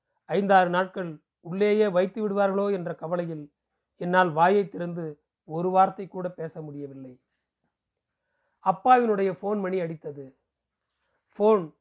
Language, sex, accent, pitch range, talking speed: Tamil, male, native, 160-200 Hz, 105 wpm